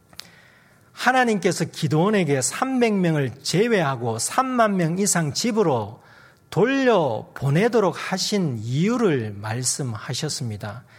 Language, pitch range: Korean, 125-195 Hz